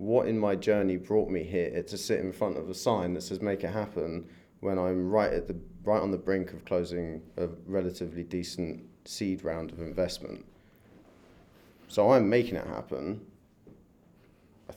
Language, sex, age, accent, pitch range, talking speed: English, male, 30-49, British, 95-120 Hz, 165 wpm